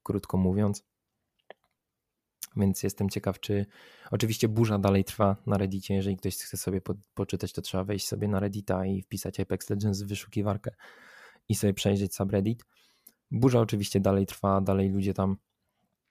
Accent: native